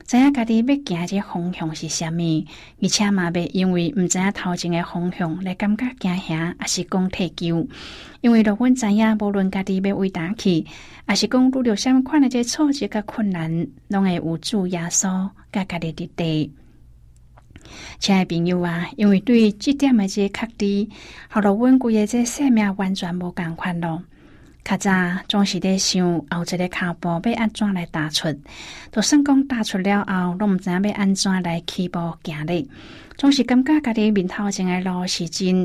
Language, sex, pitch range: Chinese, female, 170-210 Hz